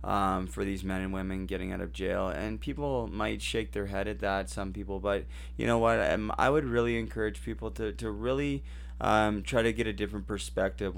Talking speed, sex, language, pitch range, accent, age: 220 wpm, male, English, 95-110 Hz, American, 20-39